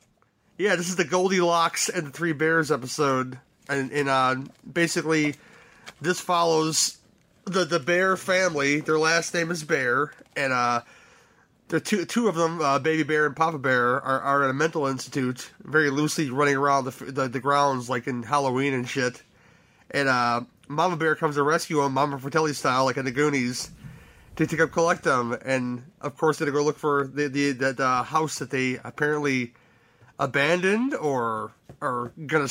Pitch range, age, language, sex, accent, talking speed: 135-160 Hz, 30-49, English, male, American, 180 wpm